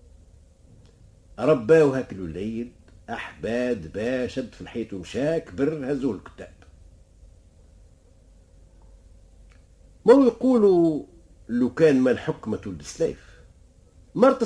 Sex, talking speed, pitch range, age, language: male, 80 wpm, 90-150 Hz, 50-69, Arabic